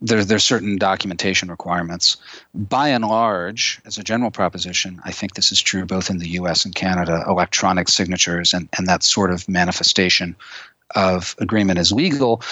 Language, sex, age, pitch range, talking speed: English, male, 40-59, 90-110 Hz, 175 wpm